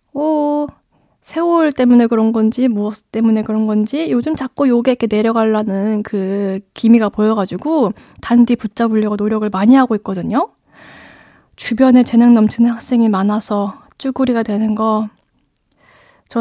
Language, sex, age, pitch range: Korean, female, 20-39, 210-260 Hz